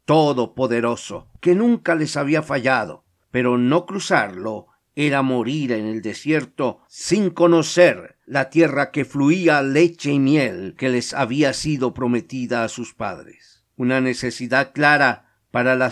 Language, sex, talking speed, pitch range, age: Spanish, male, 135 wpm, 125-160 Hz, 50-69